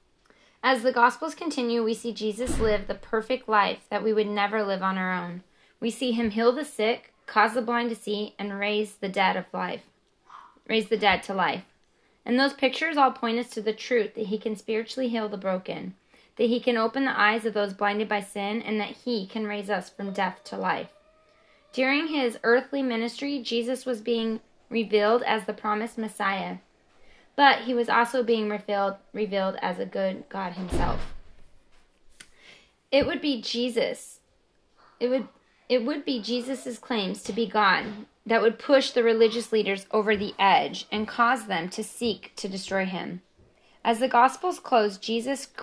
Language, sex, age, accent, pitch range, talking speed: English, female, 10-29, American, 205-245 Hz, 180 wpm